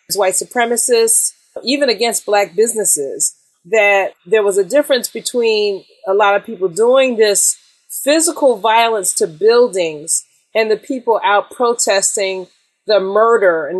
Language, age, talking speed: English, 30-49, 130 wpm